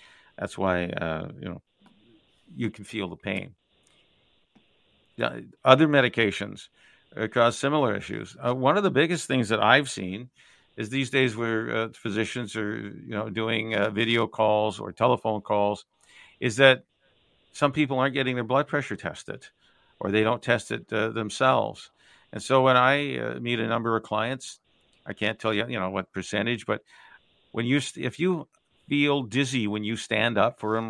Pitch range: 105-130 Hz